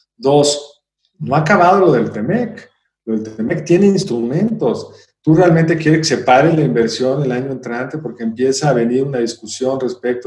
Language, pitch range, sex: Spanish, 125-160 Hz, male